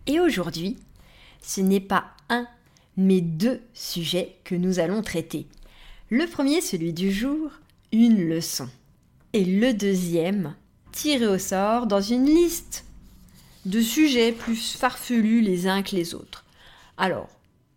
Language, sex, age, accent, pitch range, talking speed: French, female, 40-59, French, 175-235 Hz, 130 wpm